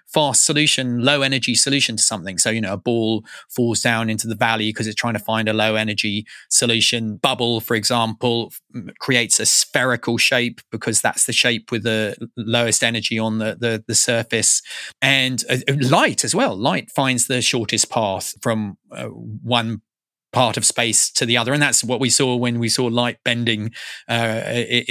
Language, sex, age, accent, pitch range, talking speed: English, male, 30-49, British, 115-145 Hz, 185 wpm